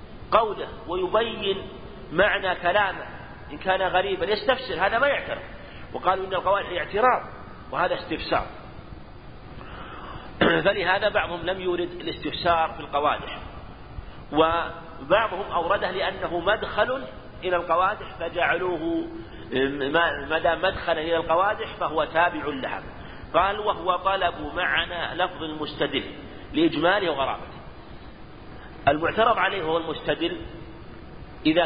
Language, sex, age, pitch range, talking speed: Arabic, male, 50-69, 145-195 Hz, 100 wpm